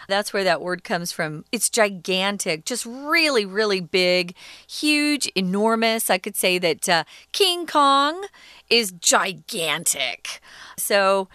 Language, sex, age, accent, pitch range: Chinese, female, 40-59, American, 195-280 Hz